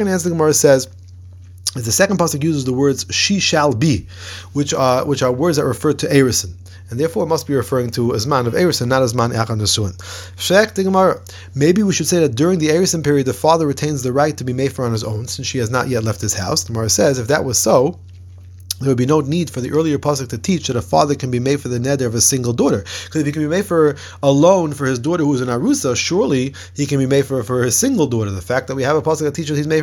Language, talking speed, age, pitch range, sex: English, 270 wpm, 30-49, 120-155 Hz, male